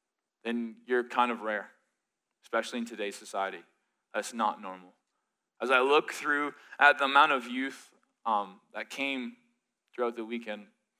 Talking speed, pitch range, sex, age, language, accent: 145 wpm, 120-145 Hz, male, 20-39, English, American